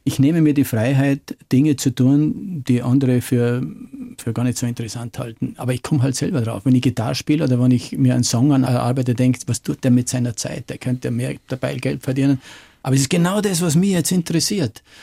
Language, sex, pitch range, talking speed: German, male, 125-140 Hz, 225 wpm